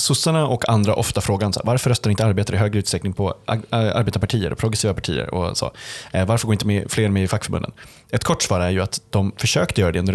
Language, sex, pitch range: Swedish, male, 95-120 Hz